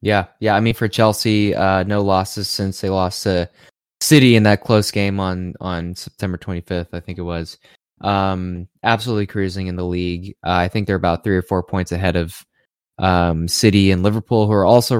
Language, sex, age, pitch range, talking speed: English, male, 20-39, 90-110 Hz, 200 wpm